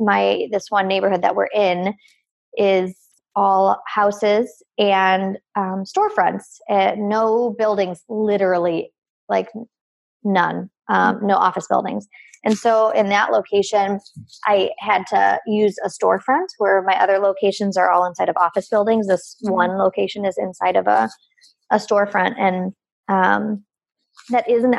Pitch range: 190-215 Hz